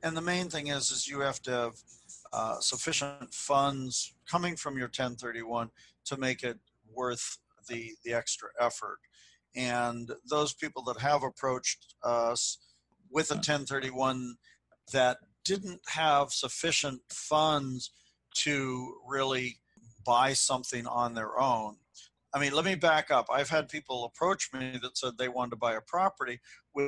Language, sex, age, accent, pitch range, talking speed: English, male, 50-69, American, 120-140 Hz, 150 wpm